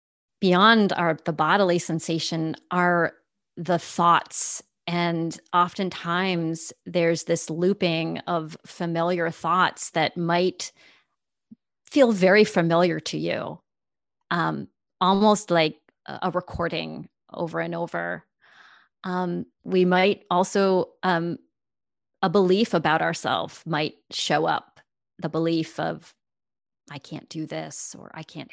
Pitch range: 165-205 Hz